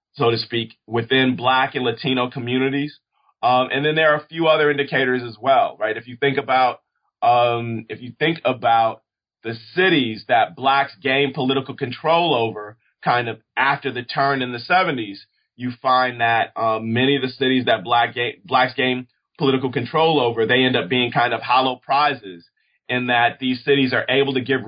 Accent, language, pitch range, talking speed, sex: American, English, 120-140 Hz, 185 wpm, male